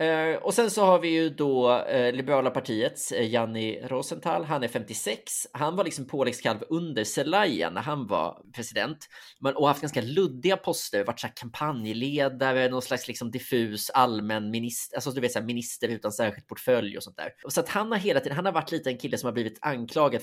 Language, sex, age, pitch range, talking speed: Swedish, male, 20-39, 115-155 Hz, 210 wpm